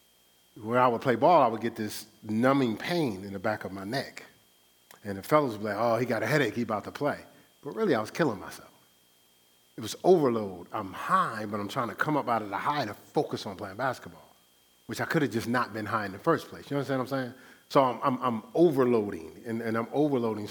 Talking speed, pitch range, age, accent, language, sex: 245 wpm, 105-135 Hz, 40-59, American, English, male